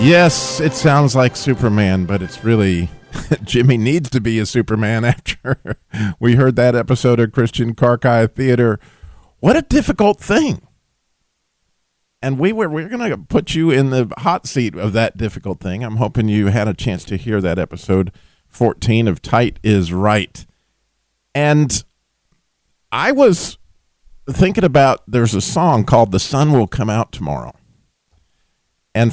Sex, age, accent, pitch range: male, 40-59, American, 95-140 Hz